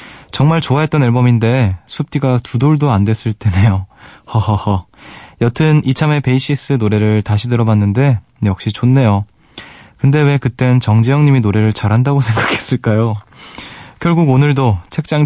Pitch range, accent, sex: 105-145 Hz, native, male